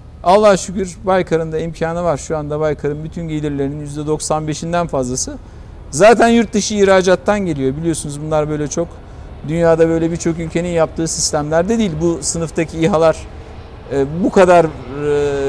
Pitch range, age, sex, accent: 145-195 Hz, 50-69, male, native